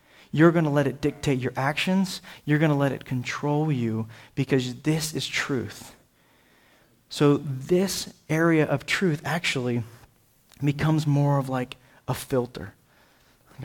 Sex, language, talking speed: male, English, 140 wpm